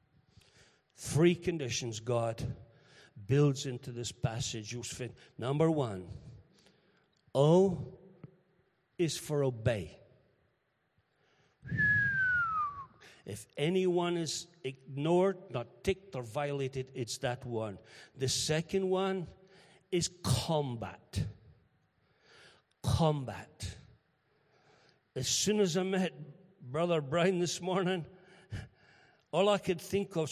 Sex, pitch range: male, 130-190 Hz